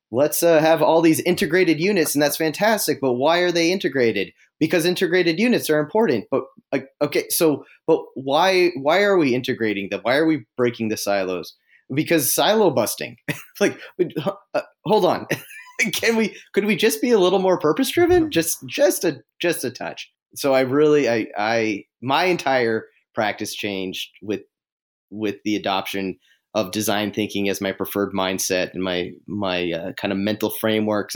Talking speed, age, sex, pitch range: 170 wpm, 30-49, male, 100-155 Hz